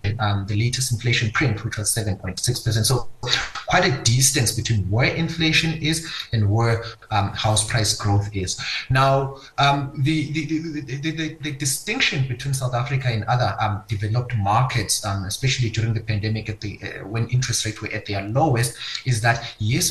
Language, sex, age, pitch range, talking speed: English, male, 30-49, 110-135 Hz, 165 wpm